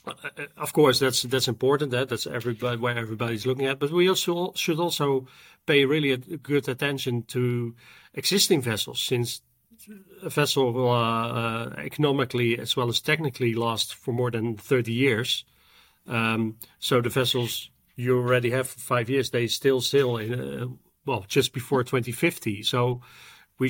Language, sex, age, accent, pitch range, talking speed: English, male, 40-59, Dutch, 115-135 Hz, 155 wpm